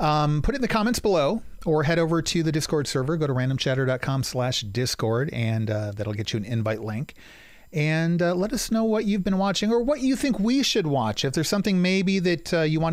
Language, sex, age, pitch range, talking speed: English, male, 40-59, 110-185 Hz, 230 wpm